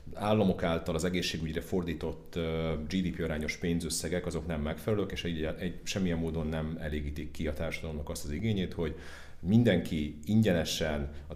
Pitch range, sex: 75-85 Hz, male